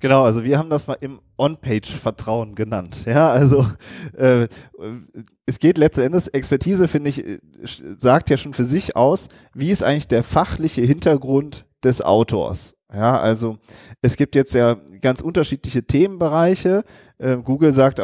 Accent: German